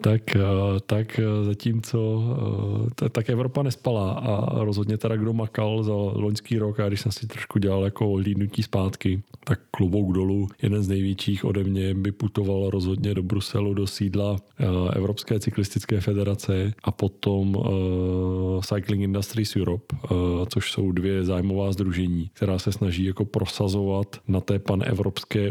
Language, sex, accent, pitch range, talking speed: Czech, male, native, 95-105 Hz, 140 wpm